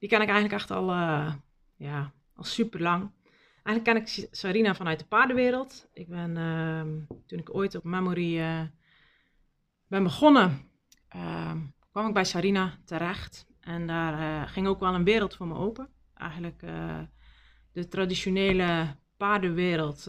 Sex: female